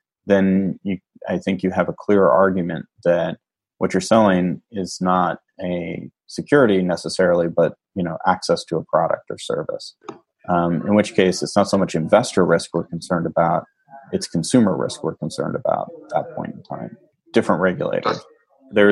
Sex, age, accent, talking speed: male, 30-49, American, 170 wpm